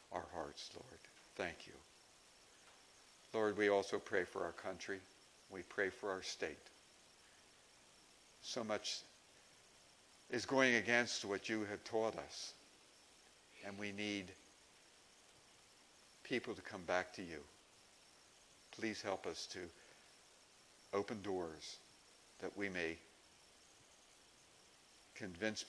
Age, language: 60-79, English